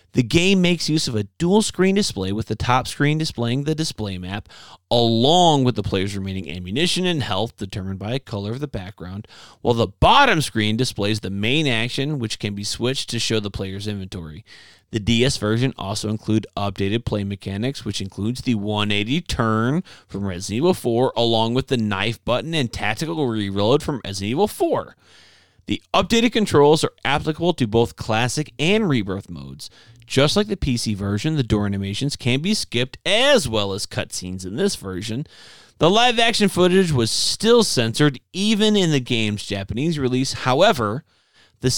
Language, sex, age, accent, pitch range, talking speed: English, male, 30-49, American, 105-155 Hz, 175 wpm